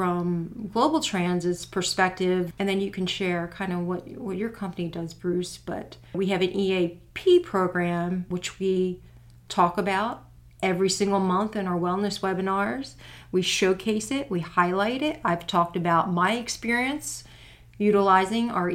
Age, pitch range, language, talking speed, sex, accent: 40-59, 175-195 Hz, English, 150 wpm, female, American